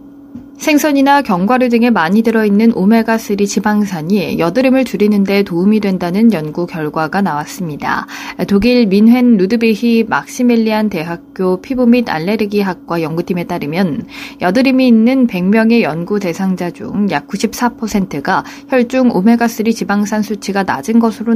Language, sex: Korean, female